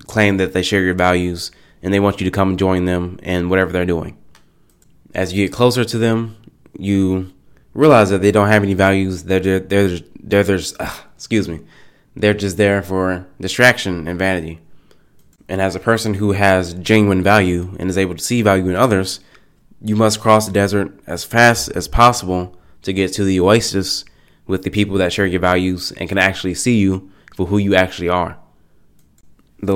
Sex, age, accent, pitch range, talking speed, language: male, 20-39, American, 95-105 Hz, 185 wpm, English